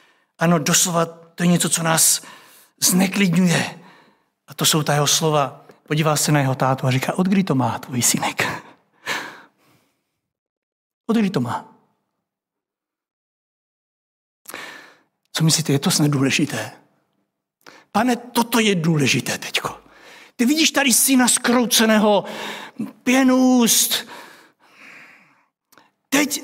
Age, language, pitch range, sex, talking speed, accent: 60-79, Czech, 170-270 Hz, male, 105 wpm, native